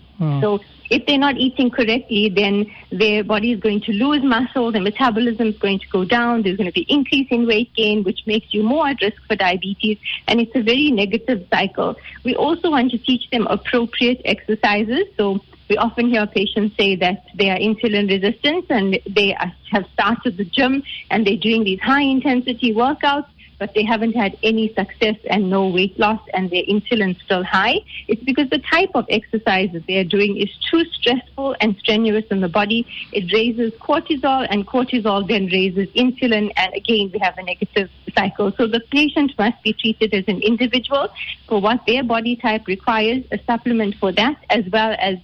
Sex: female